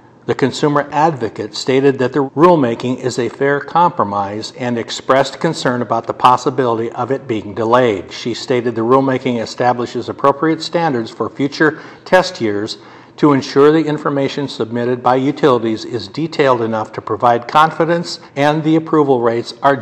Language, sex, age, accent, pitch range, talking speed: English, male, 60-79, American, 120-145 Hz, 150 wpm